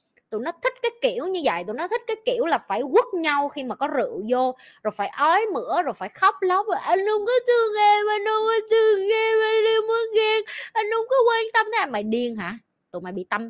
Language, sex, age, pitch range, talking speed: Vietnamese, female, 20-39, 255-380 Hz, 255 wpm